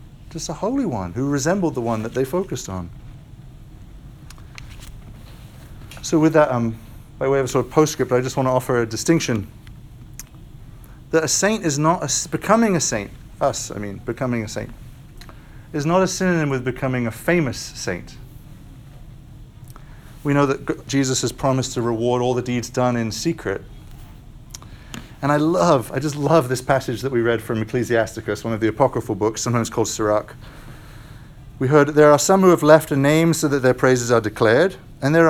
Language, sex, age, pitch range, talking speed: English, male, 40-59, 120-145 Hz, 180 wpm